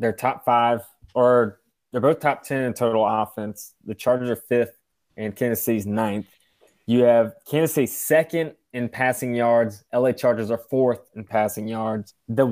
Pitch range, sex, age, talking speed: 110-130 Hz, male, 20-39, 170 wpm